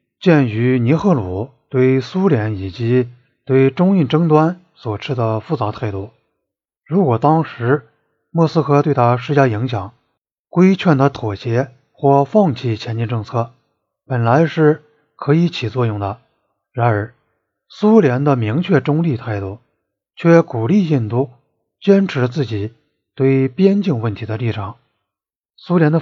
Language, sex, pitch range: Chinese, male, 115-155 Hz